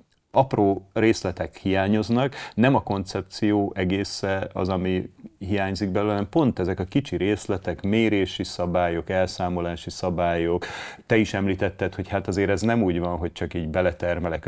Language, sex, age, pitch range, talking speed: Hungarian, male, 30-49, 85-100 Hz, 145 wpm